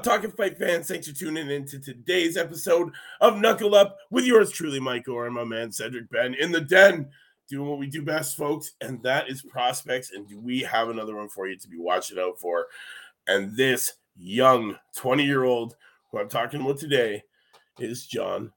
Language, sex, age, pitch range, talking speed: English, male, 30-49, 120-155 Hz, 185 wpm